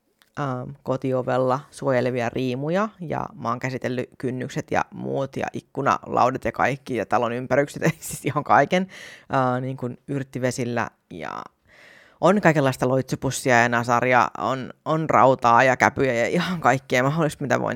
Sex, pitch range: female, 130-185 Hz